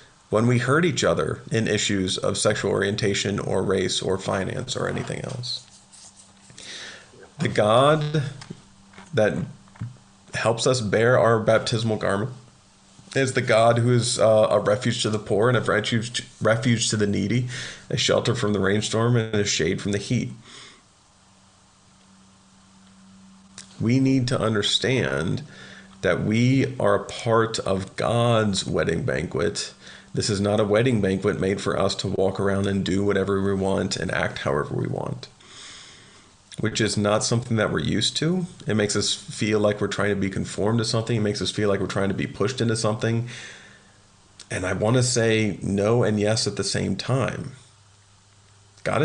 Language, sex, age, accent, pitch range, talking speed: English, male, 40-59, American, 100-120 Hz, 165 wpm